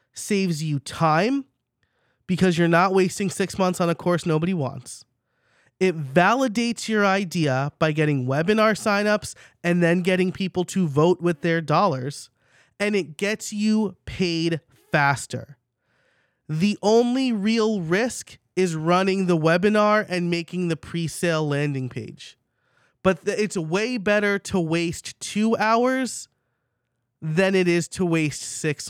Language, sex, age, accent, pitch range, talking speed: English, male, 30-49, American, 150-205 Hz, 135 wpm